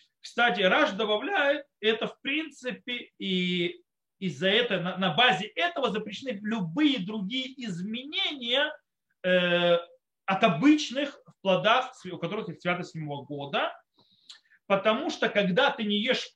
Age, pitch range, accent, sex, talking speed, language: 30-49, 180-255 Hz, native, male, 120 wpm, Russian